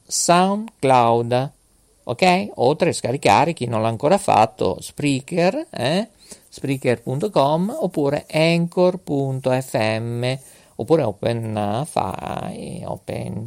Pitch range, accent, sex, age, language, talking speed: 130-190 Hz, native, male, 50-69, Italian, 85 wpm